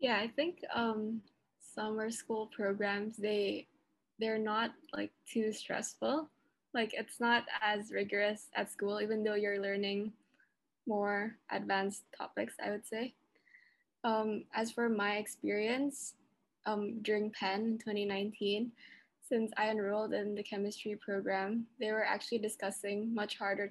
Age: 10-29